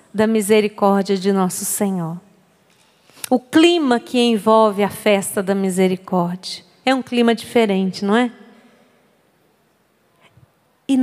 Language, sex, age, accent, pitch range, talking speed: Portuguese, female, 40-59, Brazilian, 190-260 Hz, 110 wpm